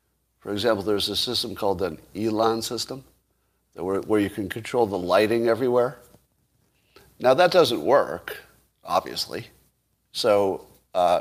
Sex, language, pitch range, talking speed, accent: male, English, 95-110 Hz, 130 wpm, American